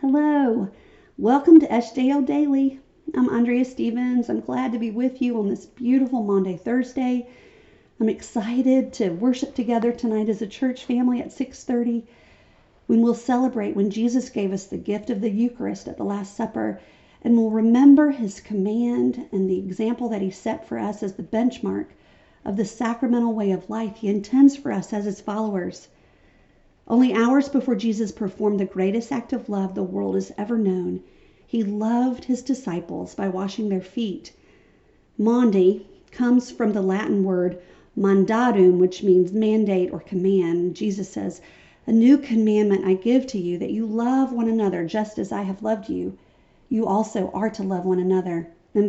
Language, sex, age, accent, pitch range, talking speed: English, female, 50-69, American, 195-245 Hz, 170 wpm